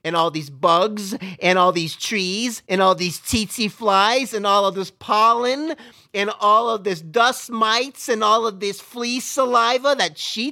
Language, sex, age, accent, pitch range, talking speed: English, male, 40-59, American, 170-245 Hz, 185 wpm